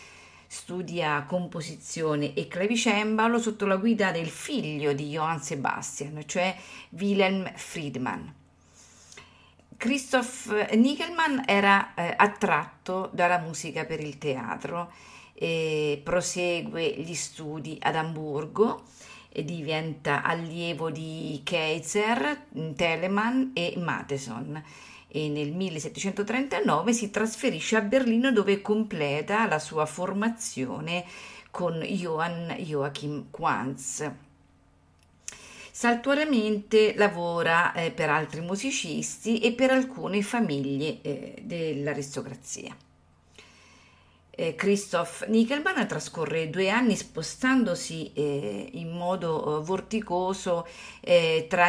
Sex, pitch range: female, 155-220 Hz